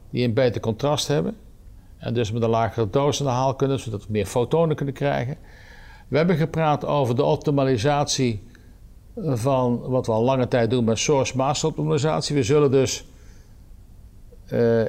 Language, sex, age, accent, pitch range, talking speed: Dutch, male, 50-69, Dutch, 110-140 Hz, 170 wpm